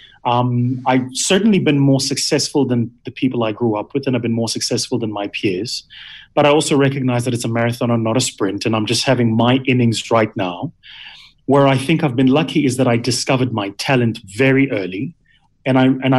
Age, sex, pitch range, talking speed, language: 30-49, male, 115-135 Hz, 215 wpm, English